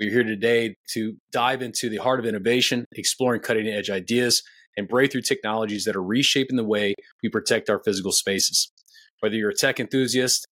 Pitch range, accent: 110-130 Hz, American